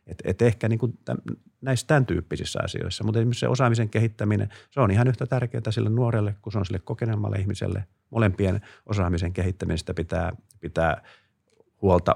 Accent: native